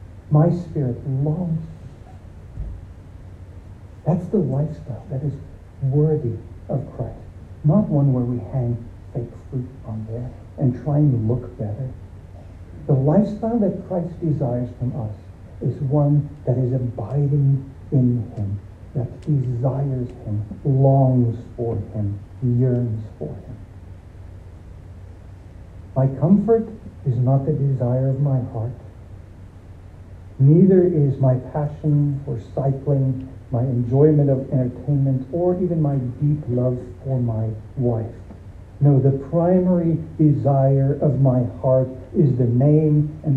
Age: 60-79